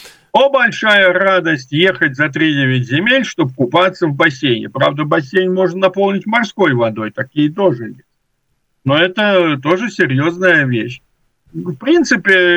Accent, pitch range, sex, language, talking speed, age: native, 135-190 Hz, male, Russian, 130 wpm, 50-69